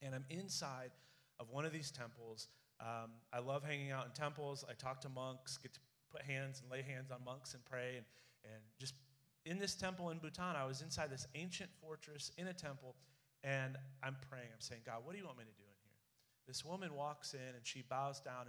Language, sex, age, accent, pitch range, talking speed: English, male, 30-49, American, 120-140 Hz, 225 wpm